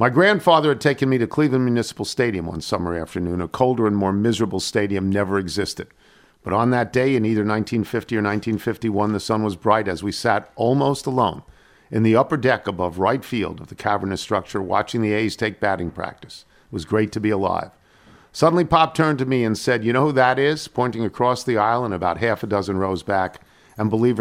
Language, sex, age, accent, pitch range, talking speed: English, male, 50-69, American, 95-125 Hz, 215 wpm